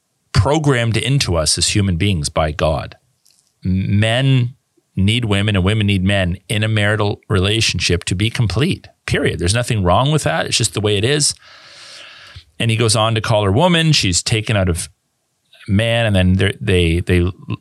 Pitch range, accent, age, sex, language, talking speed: 85-110 Hz, American, 40-59, male, English, 175 wpm